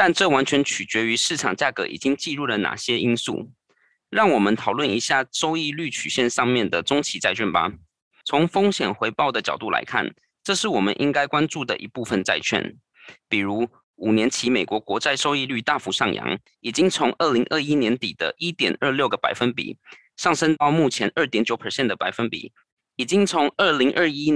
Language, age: Chinese, 20-39